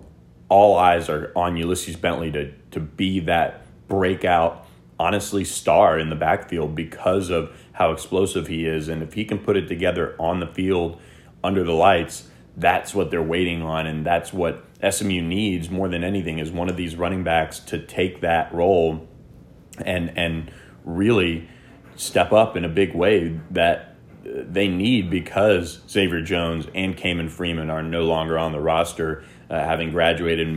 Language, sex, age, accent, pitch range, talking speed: English, male, 30-49, American, 80-95 Hz, 170 wpm